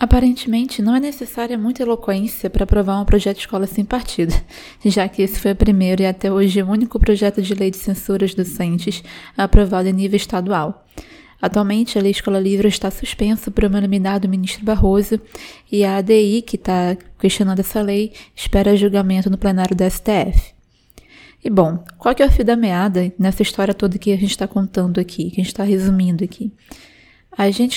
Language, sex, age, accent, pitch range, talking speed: Portuguese, female, 20-39, Brazilian, 195-220 Hz, 190 wpm